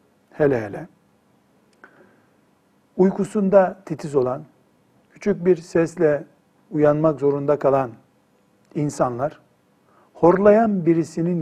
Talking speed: 75 wpm